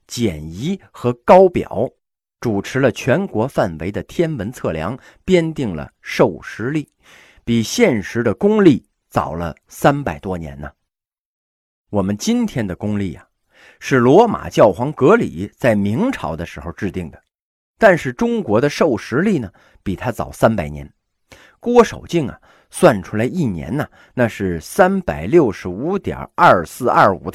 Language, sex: Chinese, male